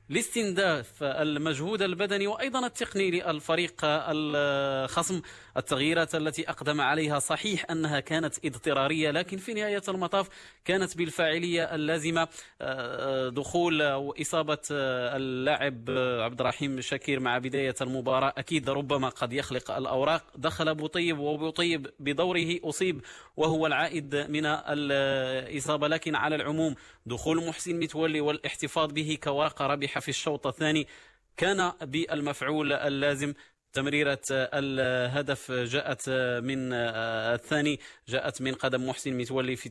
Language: Arabic